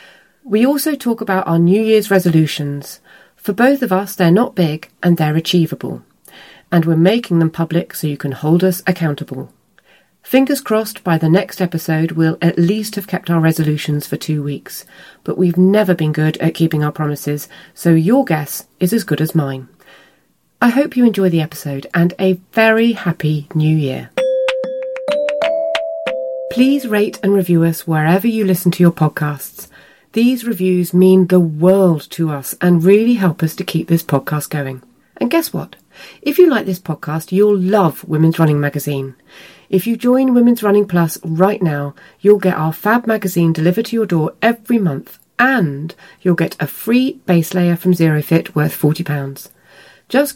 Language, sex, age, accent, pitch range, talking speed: English, female, 30-49, British, 160-215 Hz, 175 wpm